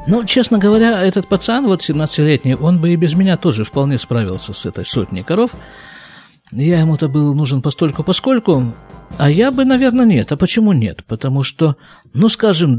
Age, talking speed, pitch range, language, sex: 50-69, 170 wpm, 130-185 Hz, Russian, male